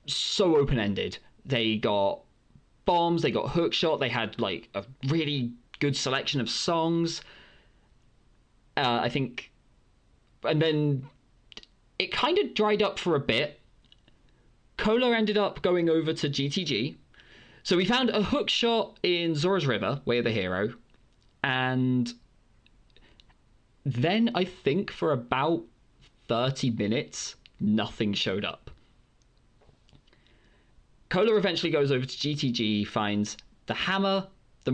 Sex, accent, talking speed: male, British, 120 wpm